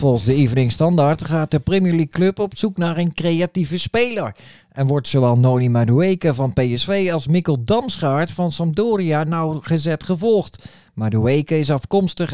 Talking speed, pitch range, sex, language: 155 wpm, 130-180 Hz, male, Dutch